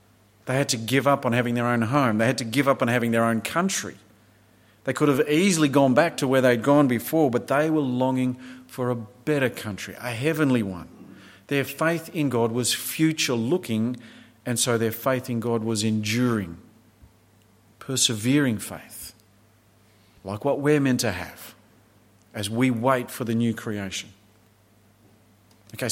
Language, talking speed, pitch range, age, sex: English, 165 wpm, 110-130 Hz, 40-59, male